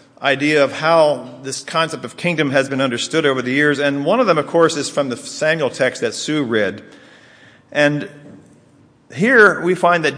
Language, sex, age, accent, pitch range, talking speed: English, male, 50-69, American, 135-170 Hz, 190 wpm